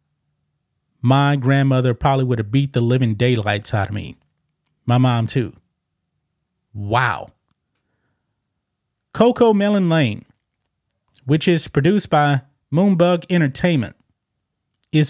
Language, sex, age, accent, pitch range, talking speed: English, male, 30-49, American, 130-175 Hz, 105 wpm